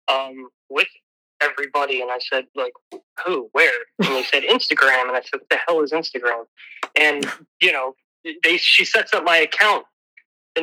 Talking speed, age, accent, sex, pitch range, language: 175 wpm, 20-39, American, male, 145-170 Hz, English